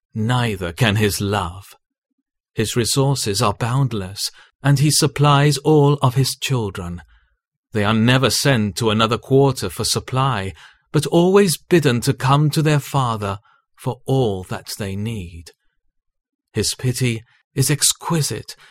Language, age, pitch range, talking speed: English, 40-59, 110-140 Hz, 130 wpm